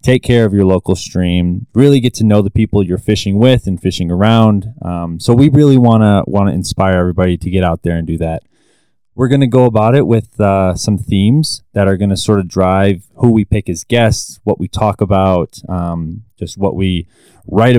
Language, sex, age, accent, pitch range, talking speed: English, male, 20-39, American, 95-120 Hz, 225 wpm